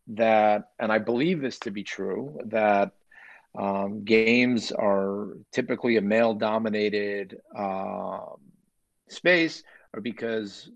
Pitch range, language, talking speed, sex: 105-135 Hz, English, 105 wpm, male